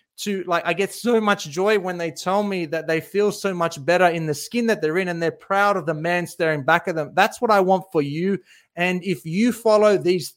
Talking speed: 255 wpm